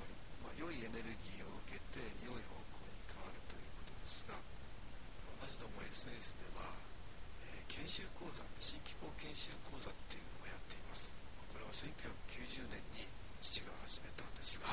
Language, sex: Japanese, male